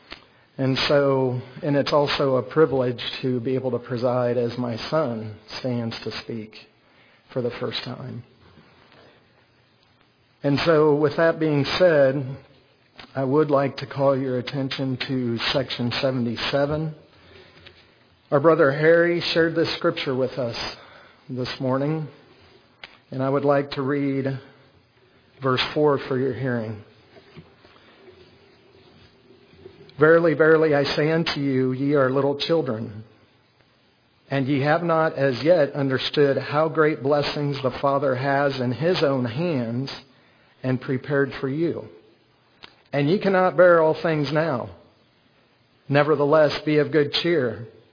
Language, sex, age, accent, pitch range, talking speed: English, male, 50-69, American, 125-150 Hz, 130 wpm